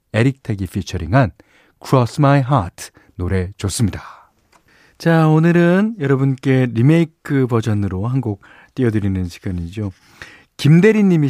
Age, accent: 40-59, native